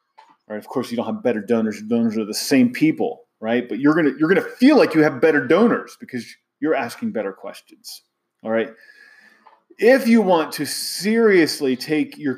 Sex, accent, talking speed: male, American, 210 wpm